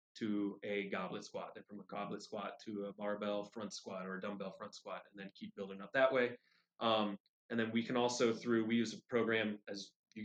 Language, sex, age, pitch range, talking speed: English, male, 20-39, 100-115 Hz, 230 wpm